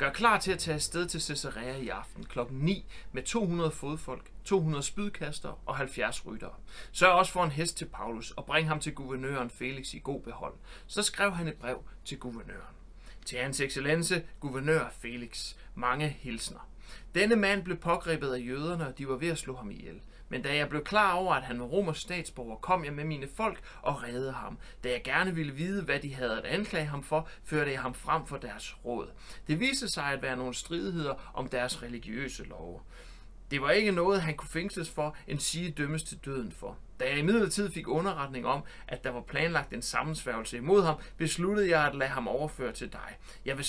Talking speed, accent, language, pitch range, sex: 210 wpm, native, Danish, 130-175 Hz, male